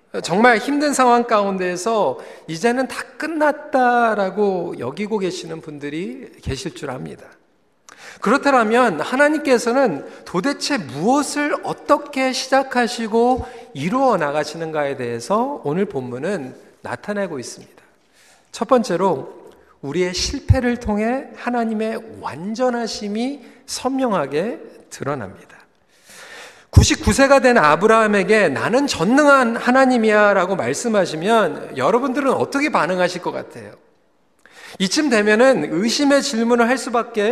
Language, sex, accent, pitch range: Korean, male, native, 210-280 Hz